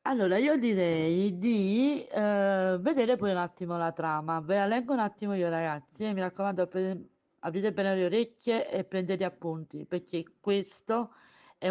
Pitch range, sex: 170-210 Hz, female